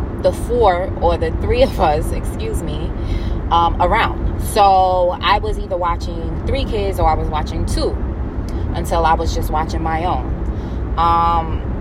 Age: 20-39